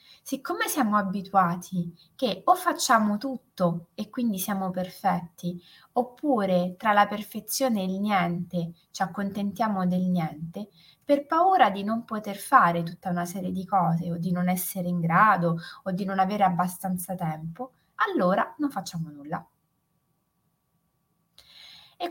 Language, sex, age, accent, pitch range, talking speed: Italian, female, 20-39, native, 180-235 Hz, 135 wpm